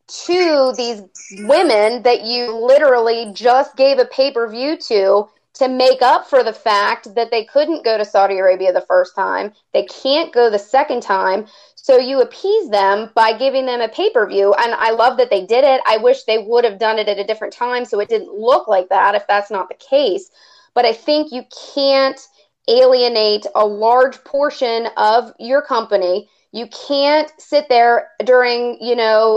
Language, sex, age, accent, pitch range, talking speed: English, female, 30-49, American, 215-270 Hz, 185 wpm